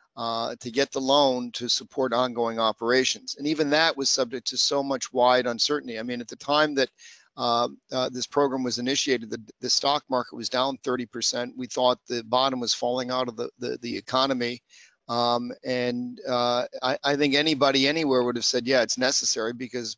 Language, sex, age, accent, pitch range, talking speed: English, male, 40-59, American, 125-140 Hz, 195 wpm